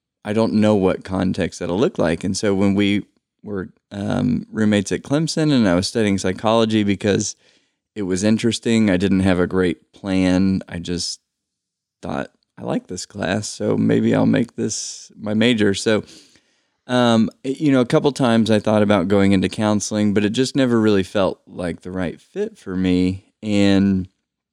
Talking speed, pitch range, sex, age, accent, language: 175 wpm, 95-110 Hz, male, 20-39, American, English